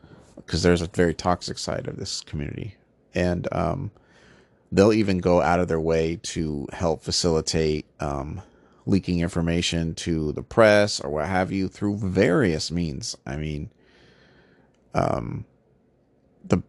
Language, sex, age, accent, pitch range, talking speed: English, male, 30-49, American, 80-90 Hz, 135 wpm